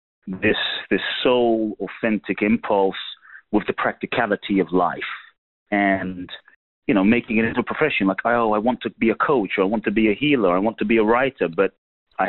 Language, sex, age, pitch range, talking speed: English, male, 30-49, 95-115 Hz, 200 wpm